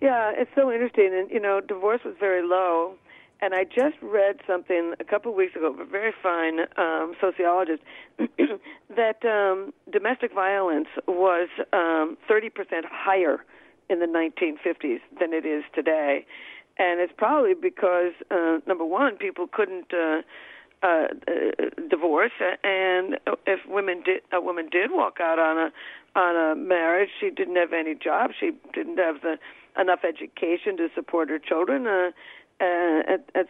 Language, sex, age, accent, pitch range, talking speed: English, female, 50-69, American, 165-240 Hz, 165 wpm